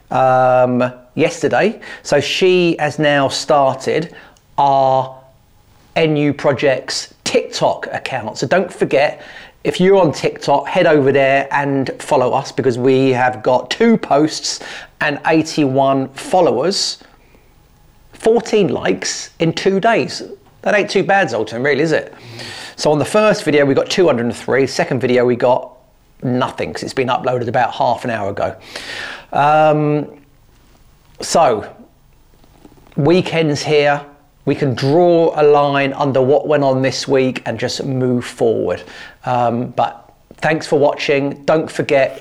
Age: 40-59